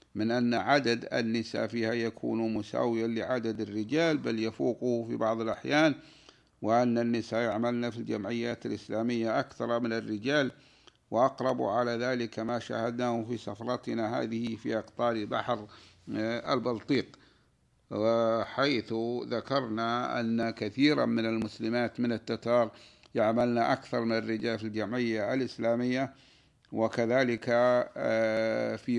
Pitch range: 115-125 Hz